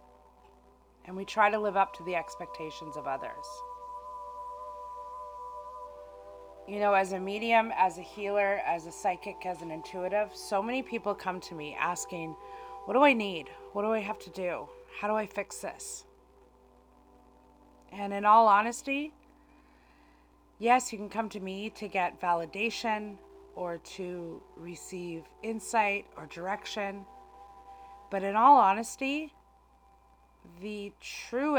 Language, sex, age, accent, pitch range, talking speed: English, female, 30-49, American, 180-245 Hz, 135 wpm